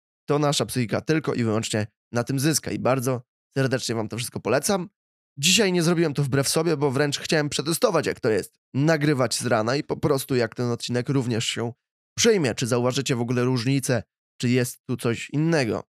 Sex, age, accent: male, 20-39, native